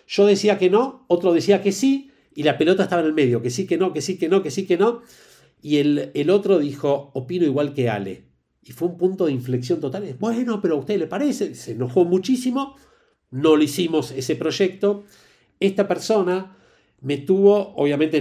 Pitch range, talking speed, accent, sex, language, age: 135-195 Hz, 205 wpm, Argentinian, male, Spanish, 50-69